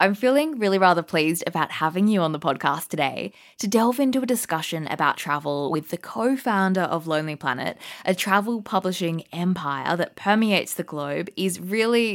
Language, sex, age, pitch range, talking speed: English, female, 20-39, 155-215 Hz, 175 wpm